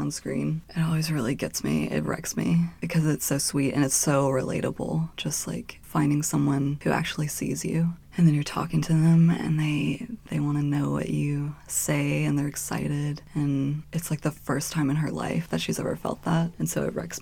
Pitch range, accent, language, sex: 135-155 Hz, American, English, female